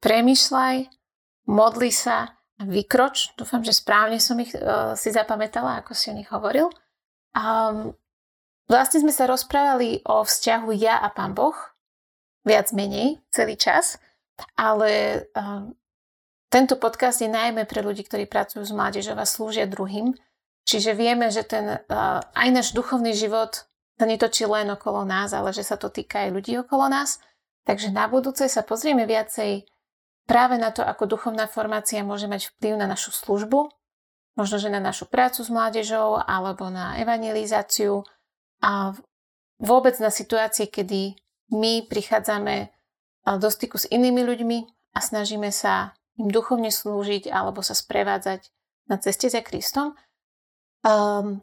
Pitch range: 210-250 Hz